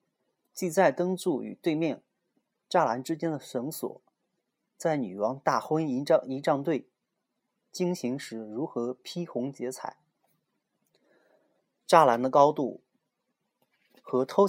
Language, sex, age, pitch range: Chinese, male, 30-49, 130-175 Hz